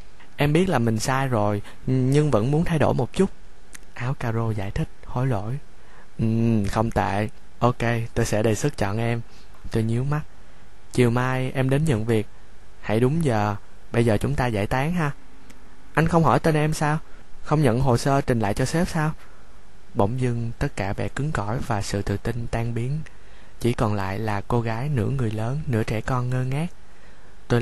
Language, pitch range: Vietnamese, 100-130 Hz